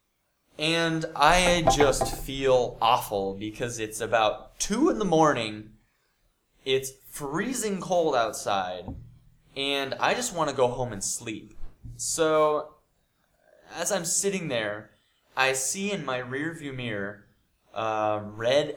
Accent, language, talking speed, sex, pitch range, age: American, Russian, 120 wpm, male, 110-155 Hz, 20-39